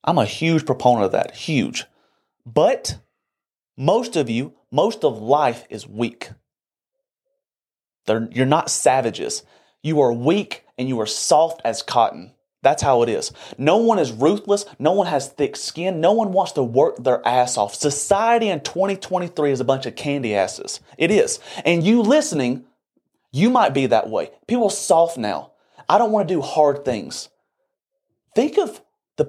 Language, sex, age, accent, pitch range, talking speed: English, male, 30-49, American, 130-210 Hz, 170 wpm